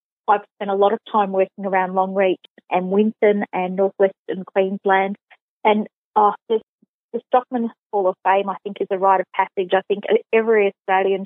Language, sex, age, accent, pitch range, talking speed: English, female, 20-39, Australian, 190-215 Hz, 180 wpm